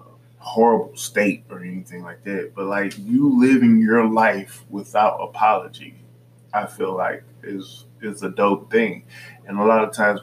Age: 20-39